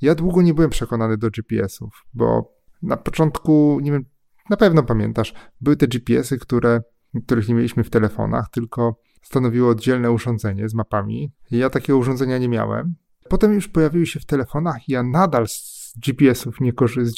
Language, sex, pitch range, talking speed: Polish, male, 115-145 Hz, 170 wpm